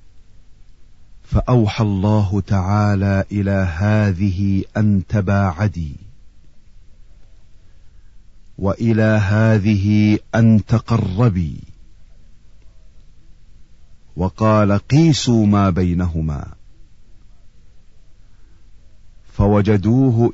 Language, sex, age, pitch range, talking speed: Arabic, male, 40-59, 85-105 Hz, 45 wpm